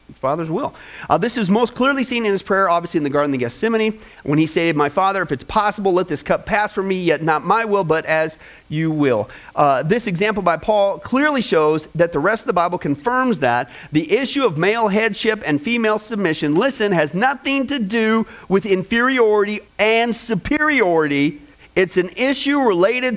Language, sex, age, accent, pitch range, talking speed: English, male, 40-59, American, 160-235 Hz, 195 wpm